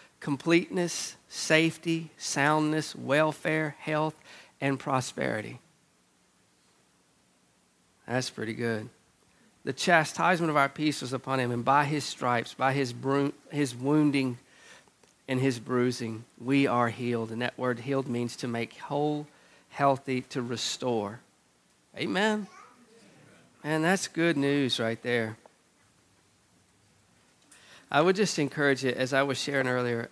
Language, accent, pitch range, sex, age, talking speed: English, American, 120-145 Hz, male, 50-69, 120 wpm